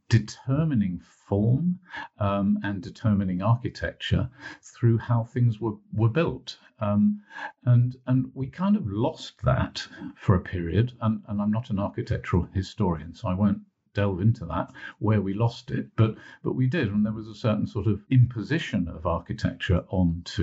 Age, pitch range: 50-69, 95-125 Hz